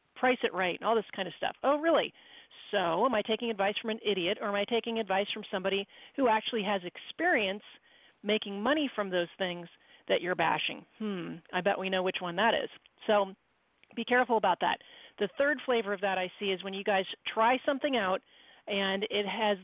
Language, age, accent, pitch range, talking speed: English, 40-59, American, 190-235 Hz, 210 wpm